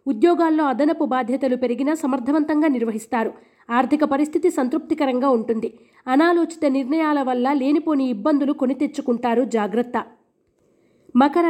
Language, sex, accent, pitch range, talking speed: Telugu, female, native, 245-305 Hz, 100 wpm